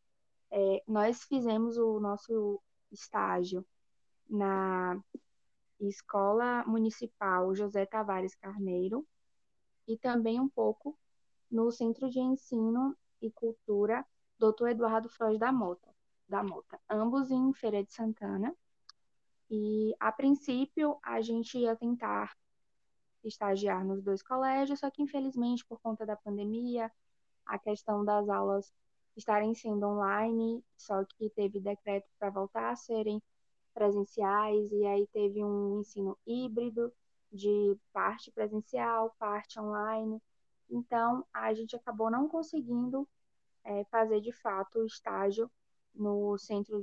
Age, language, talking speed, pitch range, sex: 10-29, Portuguese, 120 wpm, 200-235 Hz, female